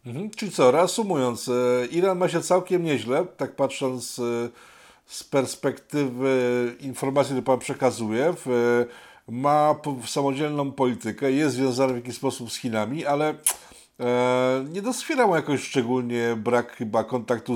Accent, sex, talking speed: native, male, 125 wpm